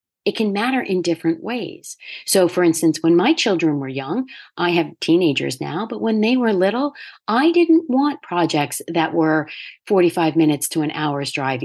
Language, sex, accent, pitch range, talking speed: English, female, American, 165-235 Hz, 180 wpm